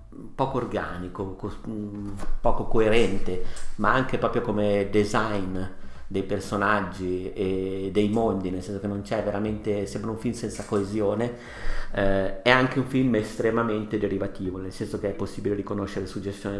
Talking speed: 140 wpm